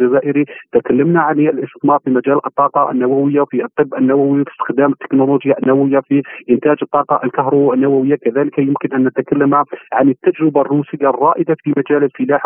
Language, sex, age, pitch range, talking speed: Arabic, male, 40-59, 135-150 Hz, 150 wpm